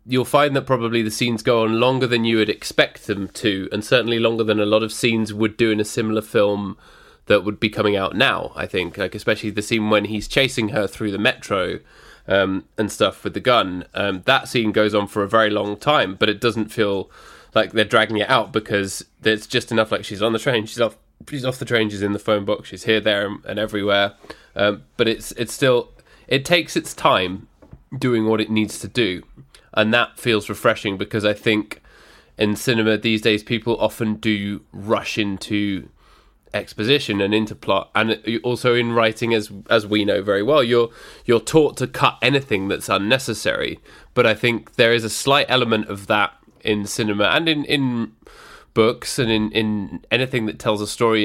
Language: English